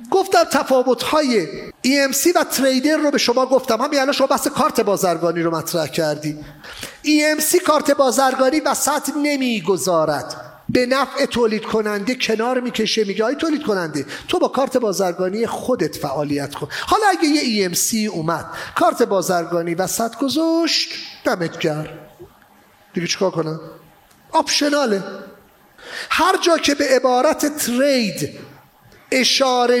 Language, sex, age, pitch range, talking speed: English, male, 40-59, 190-275 Hz, 125 wpm